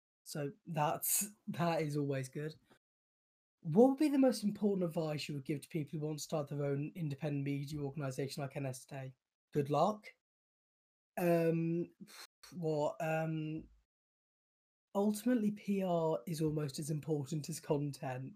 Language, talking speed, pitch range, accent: English, 145 wpm, 140-185 Hz, British